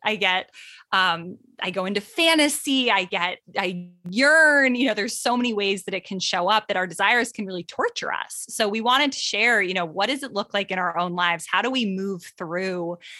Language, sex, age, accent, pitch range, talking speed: English, female, 20-39, American, 180-245 Hz, 225 wpm